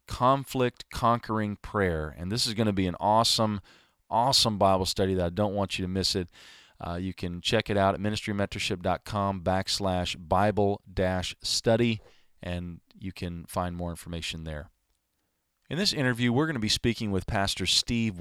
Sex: male